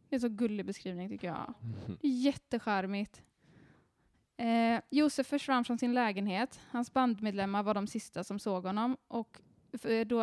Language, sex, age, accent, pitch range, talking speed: Swedish, female, 10-29, native, 200-255 Hz, 140 wpm